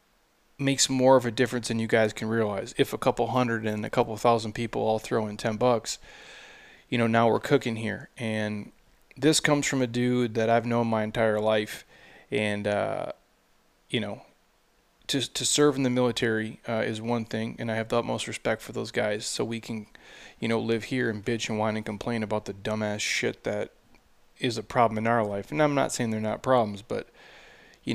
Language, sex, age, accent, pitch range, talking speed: English, male, 30-49, American, 110-125 Hz, 215 wpm